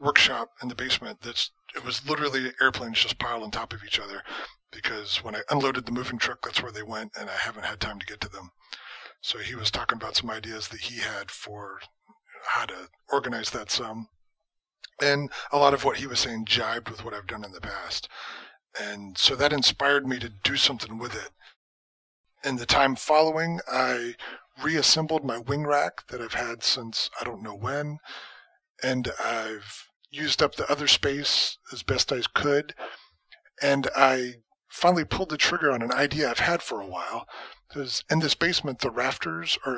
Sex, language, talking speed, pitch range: male, English, 190 wpm, 125-150 Hz